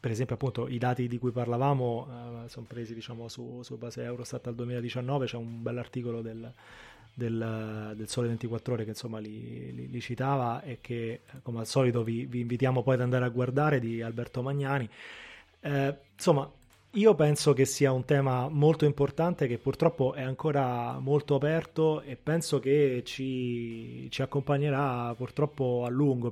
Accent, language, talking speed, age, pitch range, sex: native, Italian, 170 wpm, 20-39, 115-135 Hz, male